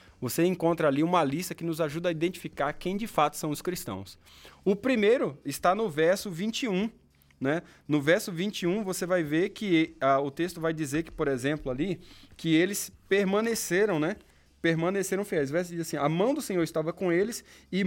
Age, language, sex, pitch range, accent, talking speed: 20-39, Portuguese, male, 135-195 Hz, Brazilian, 190 wpm